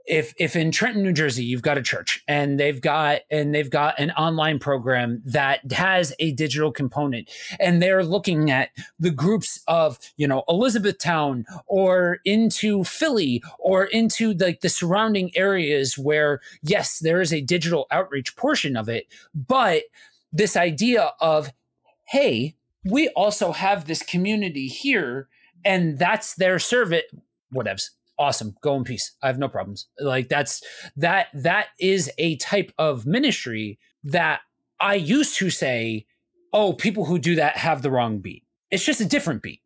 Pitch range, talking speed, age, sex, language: 145-200 Hz, 160 wpm, 30-49, male, English